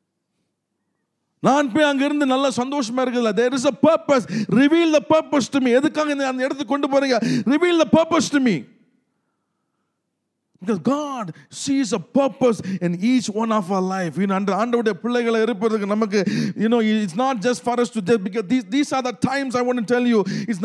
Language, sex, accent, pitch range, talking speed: English, male, Indian, 235-290 Hz, 145 wpm